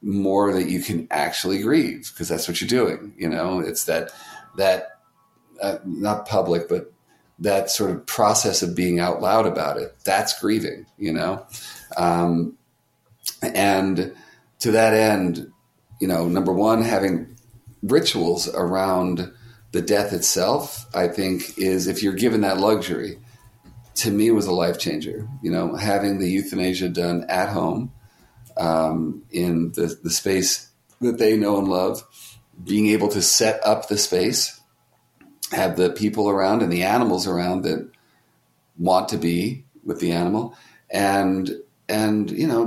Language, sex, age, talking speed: English, male, 50-69, 150 wpm